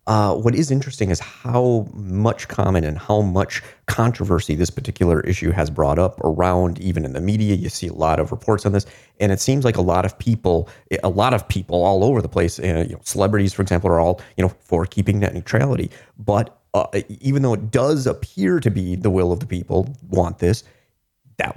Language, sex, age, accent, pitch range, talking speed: English, male, 30-49, American, 90-115 Hz, 215 wpm